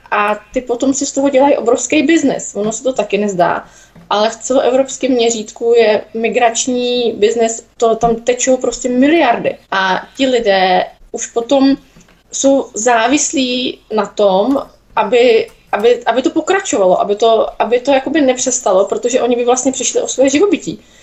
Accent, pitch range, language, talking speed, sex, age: native, 205-255 Hz, Czech, 155 wpm, female, 20-39